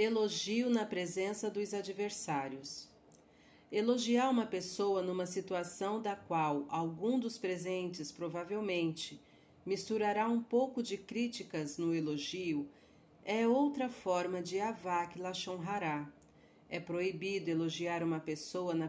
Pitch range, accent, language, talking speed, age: 165-205 Hz, Brazilian, Portuguese, 115 wpm, 40-59